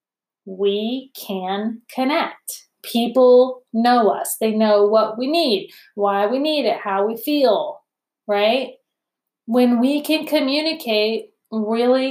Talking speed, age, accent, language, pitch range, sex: 120 wpm, 30-49, American, English, 210-265 Hz, female